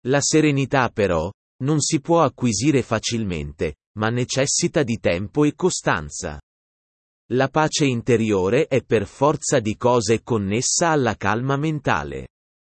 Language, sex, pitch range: Italian, male, 100-135 Hz